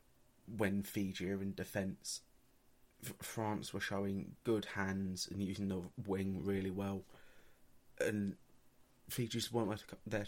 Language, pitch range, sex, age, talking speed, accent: English, 95-120 Hz, male, 30-49, 115 wpm, British